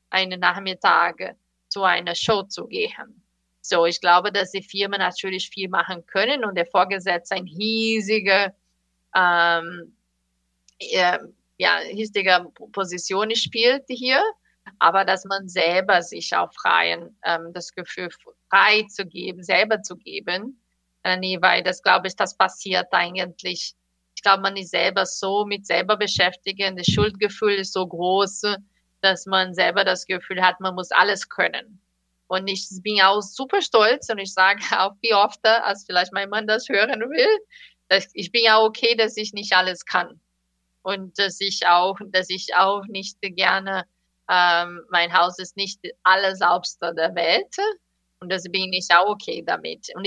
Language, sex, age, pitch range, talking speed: German, female, 30-49, 180-210 Hz, 155 wpm